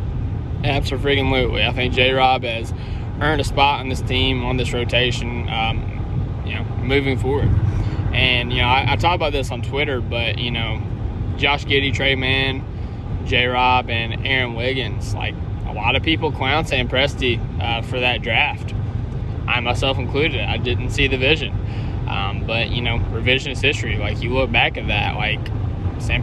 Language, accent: English, American